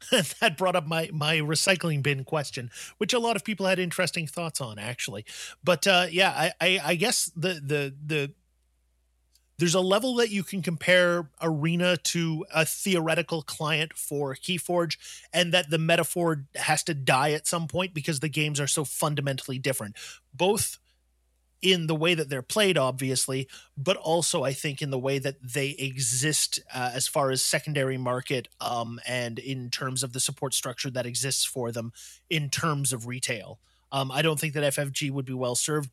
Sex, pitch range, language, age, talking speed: male, 125-165 Hz, English, 30-49, 180 wpm